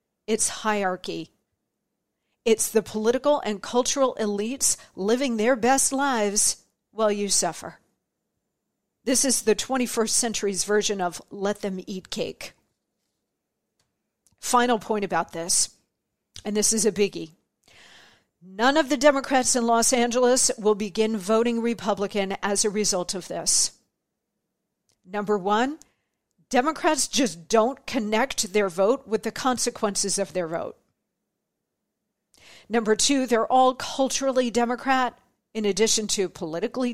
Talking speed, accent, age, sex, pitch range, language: 120 wpm, American, 50-69, female, 205-255 Hz, English